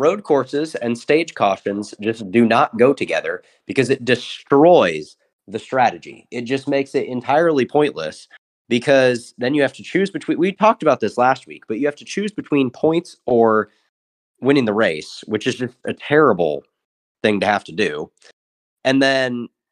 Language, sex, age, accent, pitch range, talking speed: English, male, 30-49, American, 115-145 Hz, 175 wpm